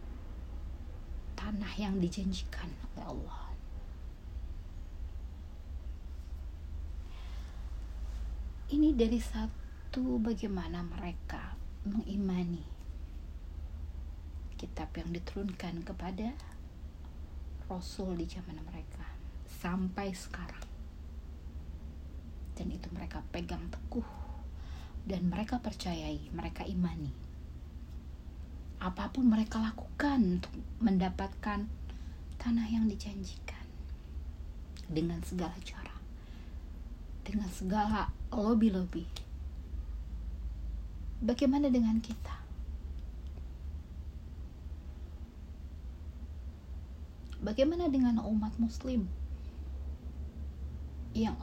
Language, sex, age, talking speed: Indonesian, female, 30-49, 60 wpm